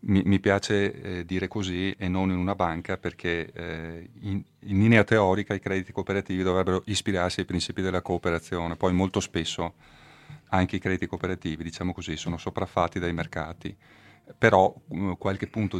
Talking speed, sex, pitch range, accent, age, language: 160 wpm, male, 85-100 Hz, native, 30-49, Italian